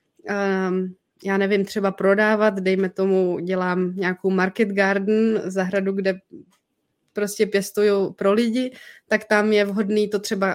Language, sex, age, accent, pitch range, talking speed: Czech, female, 20-39, native, 195-225 Hz, 125 wpm